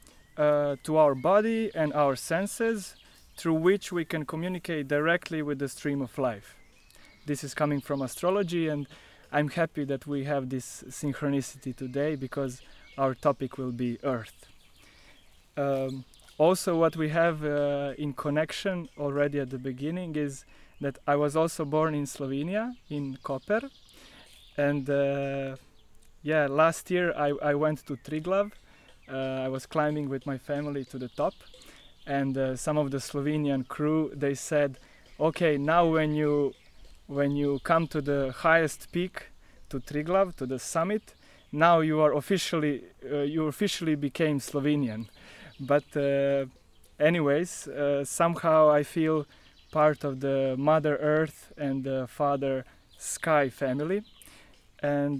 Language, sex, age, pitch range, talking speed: English, male, 20-39, 135-155 Hz, 145 wpm